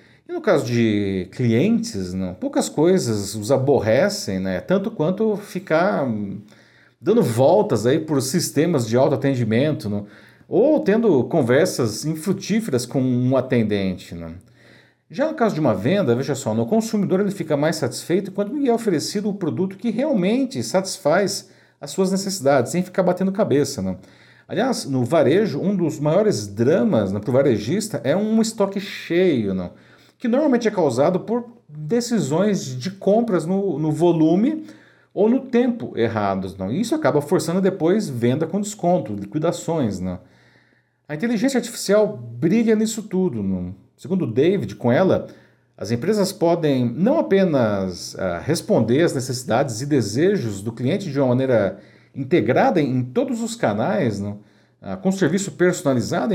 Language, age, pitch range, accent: Portuguese, 50-69, 120-195 Hz, Brazilian